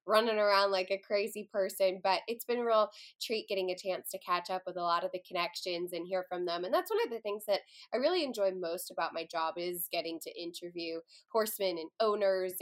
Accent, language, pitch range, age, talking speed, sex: American, English, 190-225 Hz, 10-29, 235 wpm, female